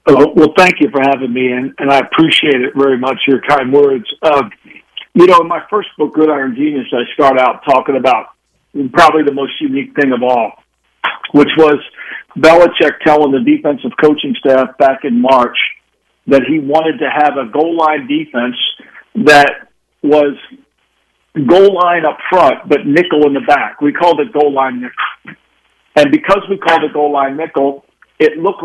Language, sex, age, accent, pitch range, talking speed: English, male, 60-79, American, 140-170 Hz, 170 wpm